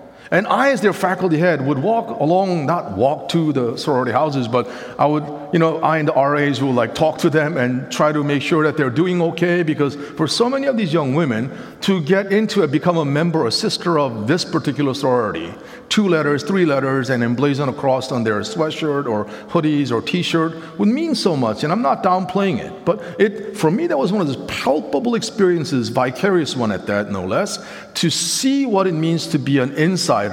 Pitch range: 140-195 Hz